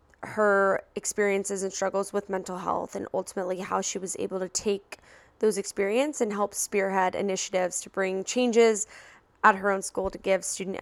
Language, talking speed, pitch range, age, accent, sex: English, 170 wpm, 195-225 Hz, 10-29, American, female